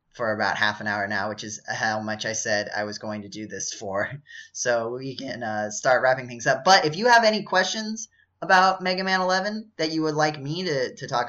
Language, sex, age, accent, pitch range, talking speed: English, male, 10-29, American, 120-160 Hz, 240 wpm